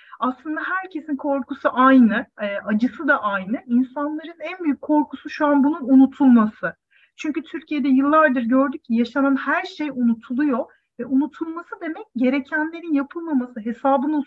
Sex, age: female, 40-59